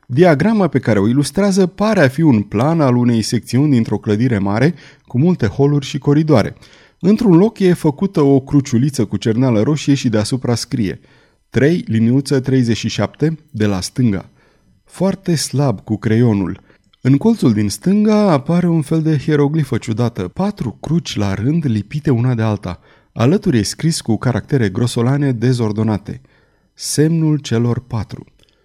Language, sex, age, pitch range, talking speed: Romanian, male, 30-49, 115-155 Hz, 145 wpm